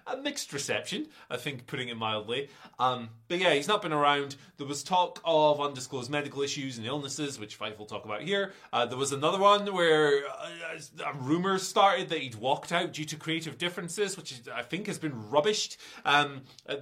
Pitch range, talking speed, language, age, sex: 130-185 Hz, 195 wpm, English, 30-49, male